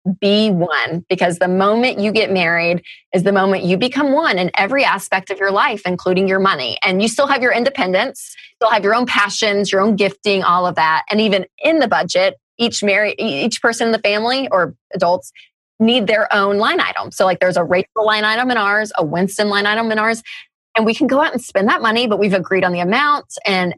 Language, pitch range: English, 180-220 Hz